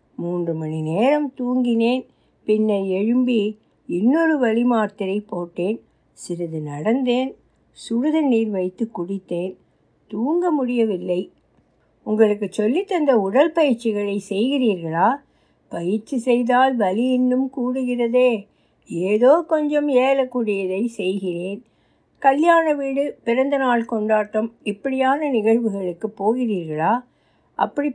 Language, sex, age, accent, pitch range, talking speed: Tamil, female, 60-79, native, 200-275 Hz, 90 wpm